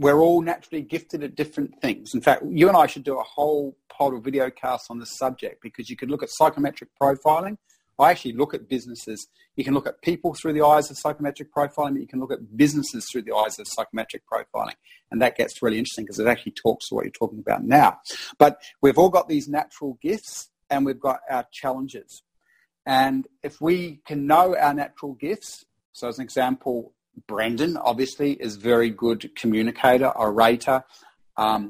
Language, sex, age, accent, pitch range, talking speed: English, male, 40-59, Australian, 125-150 Hz, 195 wpm